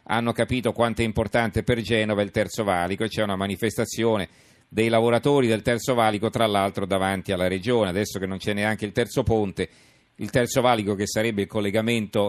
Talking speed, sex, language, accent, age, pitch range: 190 wpm, male, Italian, native, 40-59, 100-130 Hz